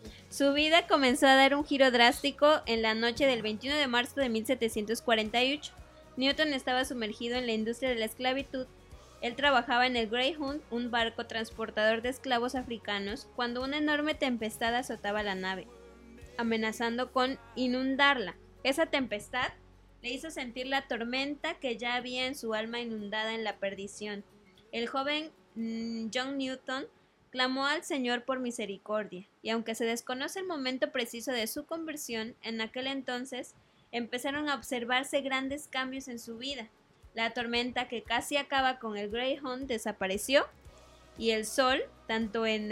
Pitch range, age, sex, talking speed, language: 225-270 Hz, 20-39, female, 150 wpm, Spanish